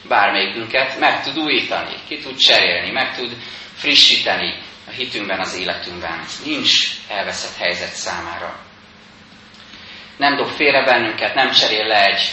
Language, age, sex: Hungarian, 30-49, male